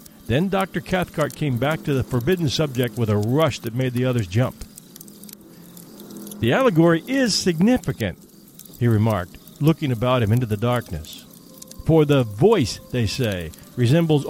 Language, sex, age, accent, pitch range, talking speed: English, male, 50-69, American, 115-165 Hz, 145 wpm